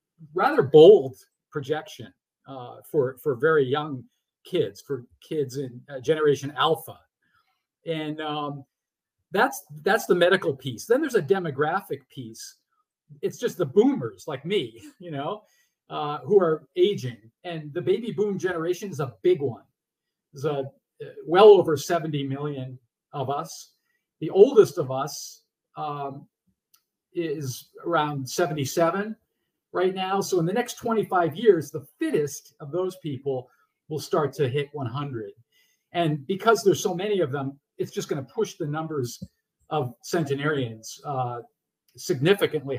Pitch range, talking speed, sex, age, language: 140-205 Hz, 140 wpm, male, 50-69, English